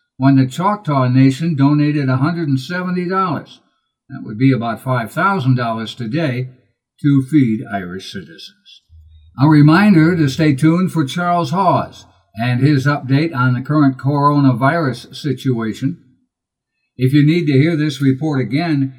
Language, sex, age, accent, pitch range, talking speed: English, male, 60-79, American, 125-150 Hz, 125 wpm